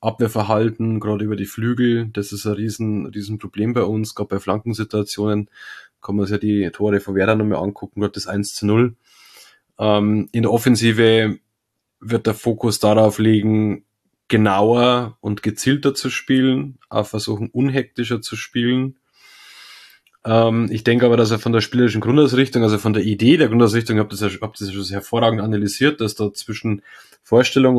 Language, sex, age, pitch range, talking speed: German, male, 20-39, 105-120 Hz, 160 wpm